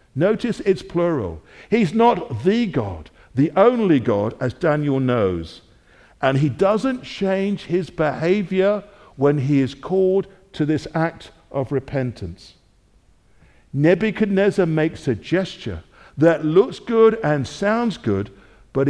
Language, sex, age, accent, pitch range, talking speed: English, male, 60-79, British, 120-195 Hz, 125 wpm